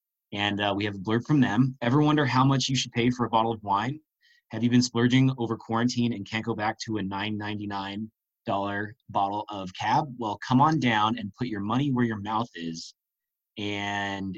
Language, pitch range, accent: English, 105-130 Hz, American